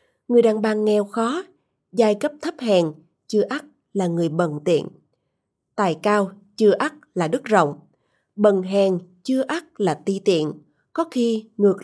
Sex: female